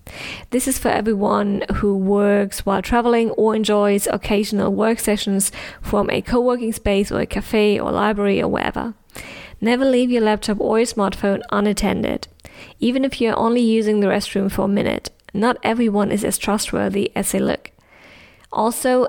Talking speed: 160 wpm